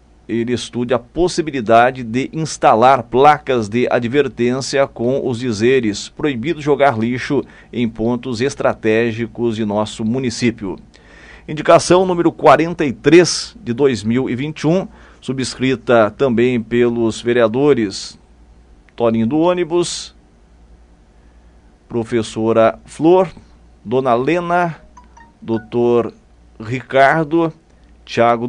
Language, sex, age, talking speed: Portuguese, male, 40-59, 85 wpm